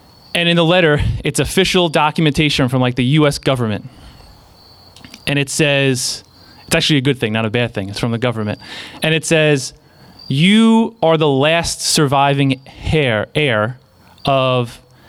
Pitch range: 115-160 Hz